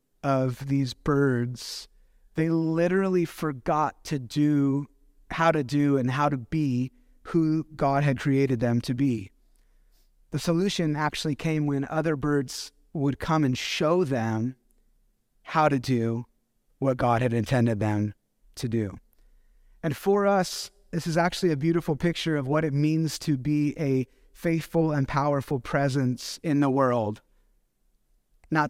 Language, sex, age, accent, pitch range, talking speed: English, male, 30-49, American, 130-160 Hz, 140 wpm